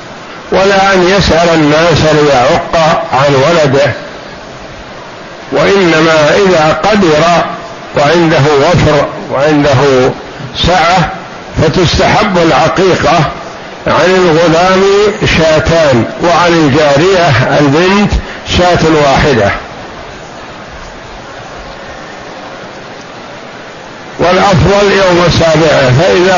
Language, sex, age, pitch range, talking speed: Arabic, male, 60-79, 150-180 Hz, 65 wpm